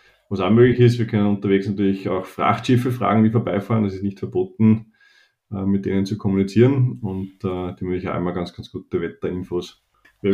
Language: German